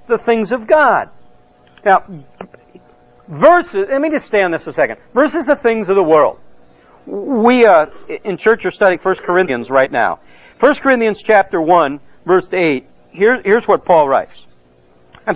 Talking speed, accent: 170 wpm, American